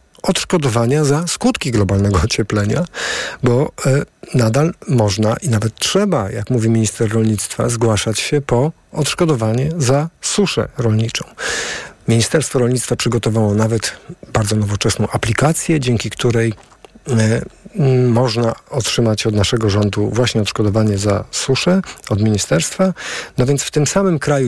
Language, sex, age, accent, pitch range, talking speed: Polish, male, 50-69, native, 115-145 Hz, 120 wpm